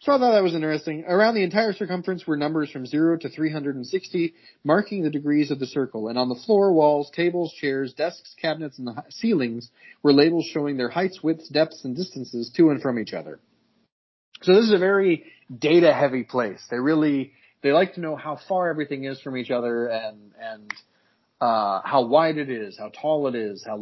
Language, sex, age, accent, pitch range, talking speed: English, male, 30-49, American, 130-175 Hz, 205 wpm